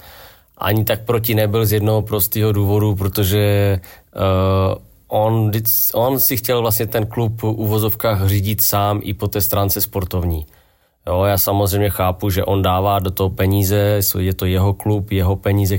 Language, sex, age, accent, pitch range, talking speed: Czech, male, 20-39, native, 95-105 Hz, 160 wpm